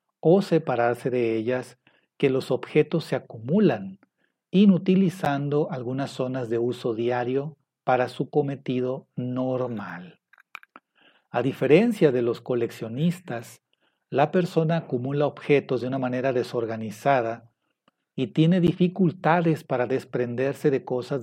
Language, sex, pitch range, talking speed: Spanish, male, 125-160 Hz, 110 wpm